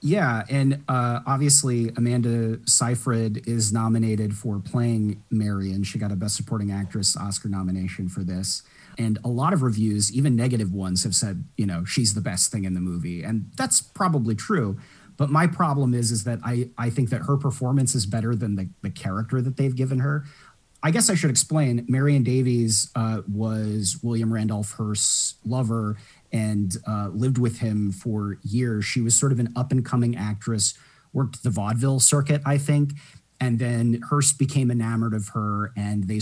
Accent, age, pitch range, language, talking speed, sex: American, 30-49, 105-130 Hz, English, 180 wpm, male